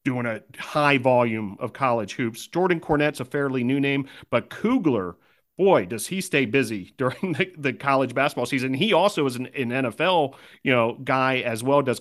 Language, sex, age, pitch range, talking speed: English, male, 40-59, 125-145 Hz, 190 wpm